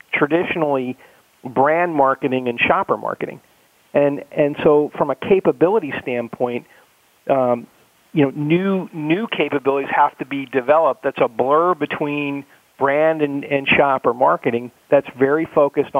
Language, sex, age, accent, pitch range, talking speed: English, male, 40-59, American, 130-150 Hz, 130 wpm